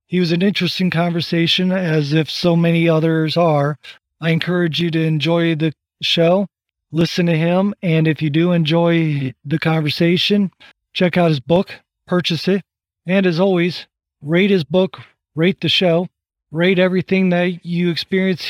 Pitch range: 160-200 Hz